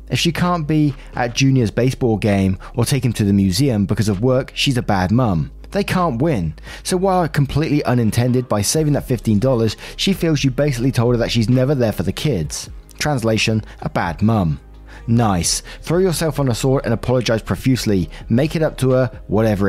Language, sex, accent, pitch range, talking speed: English, male, British, 110-145 Hz, 195 wpm